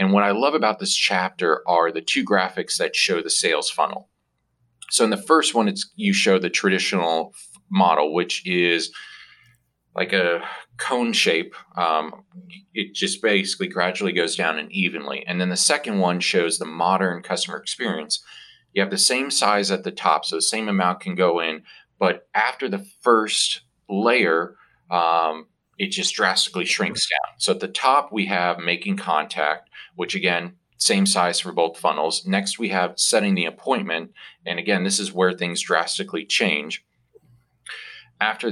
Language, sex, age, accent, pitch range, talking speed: English, male, 40-59, American, 85-125 Hz, 165 wpm